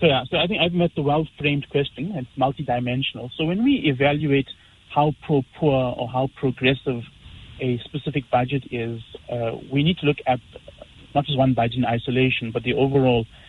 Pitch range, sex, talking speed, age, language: 120-140 Hz, male, 180 wpm, 30-49, English